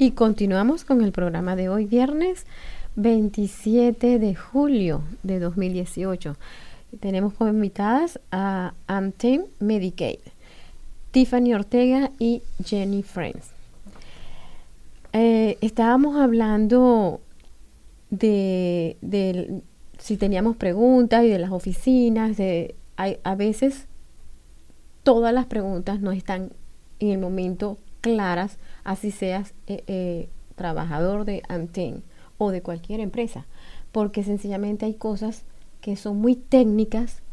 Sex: female